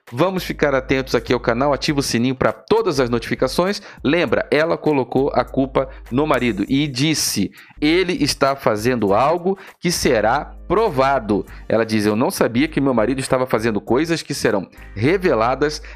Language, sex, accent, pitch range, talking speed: Portuguese, male, Brazilian, 115-155 Hz, 160 wpm